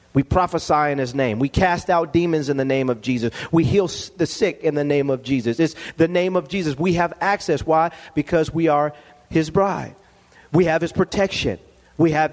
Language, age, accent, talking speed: English, 40-59, American, 210 wpm